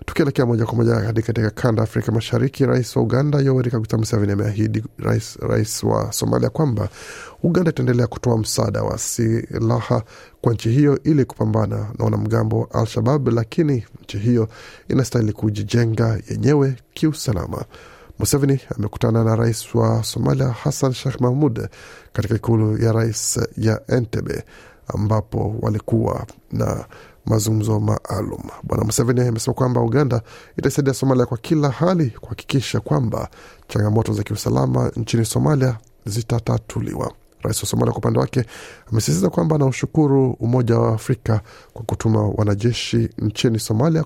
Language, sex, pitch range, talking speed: Swahili, male, 110-130 Hz, 130 wpm